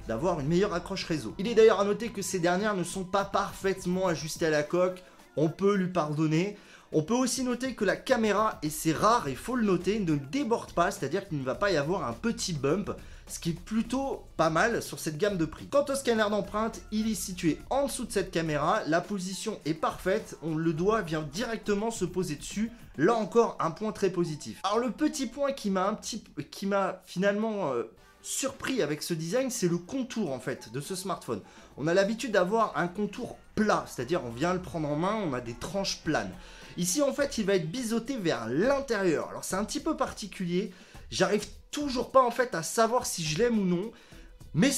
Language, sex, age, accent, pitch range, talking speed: French, male, 30-49, French, 170-225 Hz, 220 wpm